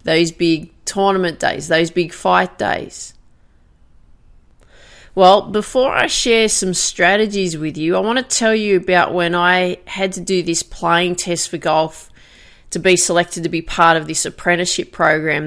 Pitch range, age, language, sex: 160-195 Hz, 30-49, English, female